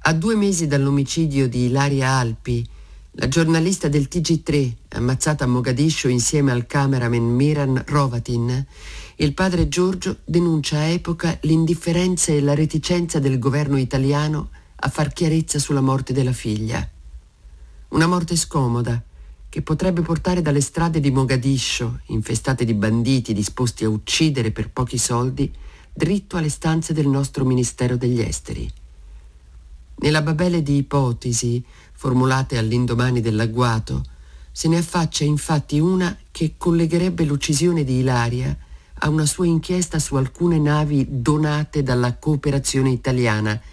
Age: 50-69